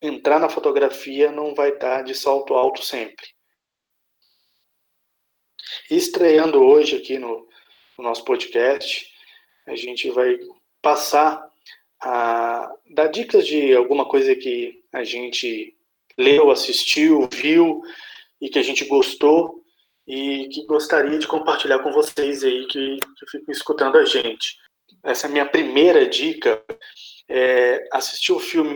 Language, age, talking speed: Portuguese, 20-39, 130 wpm